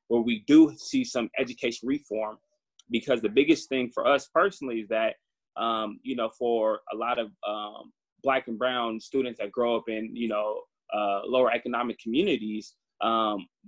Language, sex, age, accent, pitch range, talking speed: English, male, 20-39, American, 115-145 Hz, 170 wpm